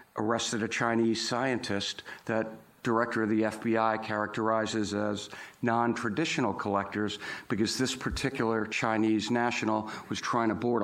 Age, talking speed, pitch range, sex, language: 50-69, 120 wpm, 105-120 Hz, male, English